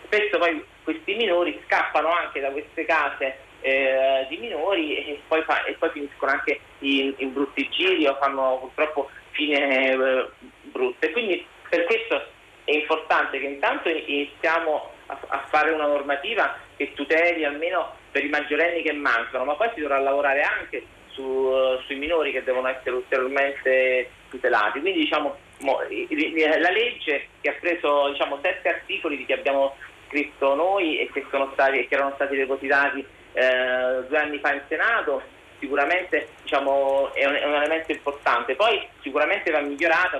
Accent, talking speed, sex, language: native, 160 wpm, male, Italian